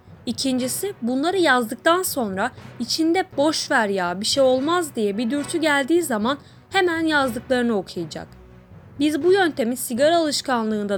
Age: 30-49